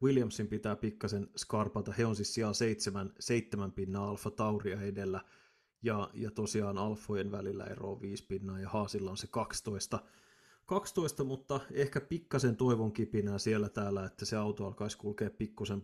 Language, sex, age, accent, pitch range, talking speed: Finnish, male, 30-49, native, 105-120 Hz, 155 wpm